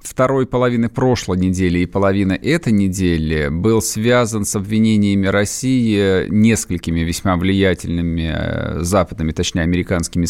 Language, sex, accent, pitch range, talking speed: Russian, male, native, 95-115 Hz, 110 wpm